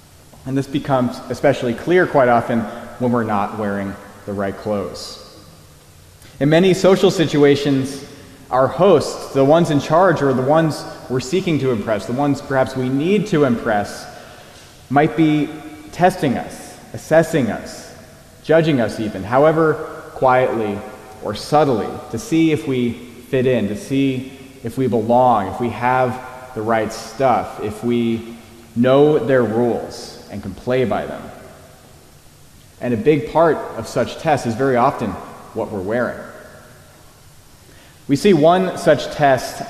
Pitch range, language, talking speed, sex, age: 120-145 Hz, English, 145 wpm, male, 30-49